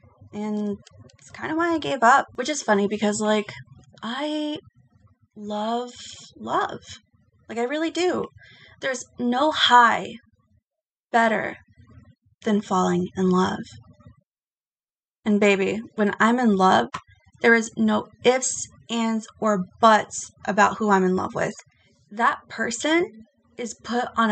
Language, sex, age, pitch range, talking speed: English, female, 20-39, 185-230 Hz, 130 wpm